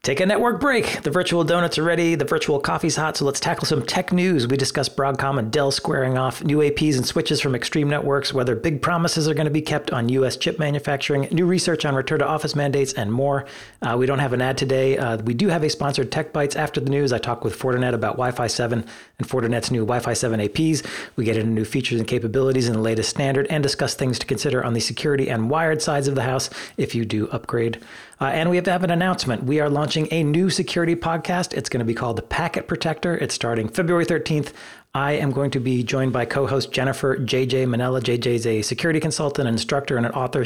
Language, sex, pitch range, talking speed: English, male, 120-150 Hz, 235 wpm